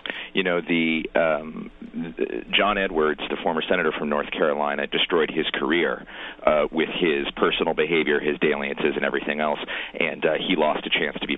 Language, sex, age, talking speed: English, male, 40-59, 180 wpm